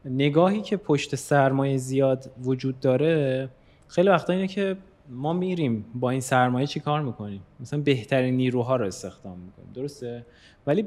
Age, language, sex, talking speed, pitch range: 20-39, Persian, male, 150 wpm, 120-150 Hz